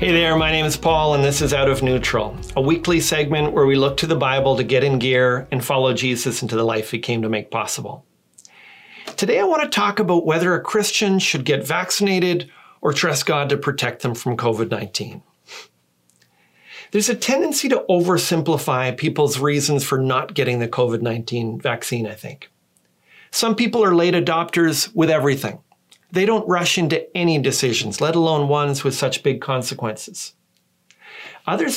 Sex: male